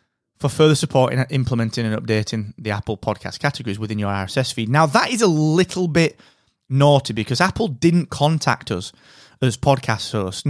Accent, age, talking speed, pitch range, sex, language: British, 30-49, 170 wpm, 120-150 Hz, male, English